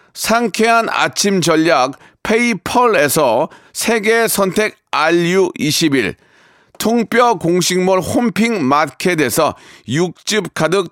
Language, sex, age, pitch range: Korean, male, 40-59, 185-235 Hz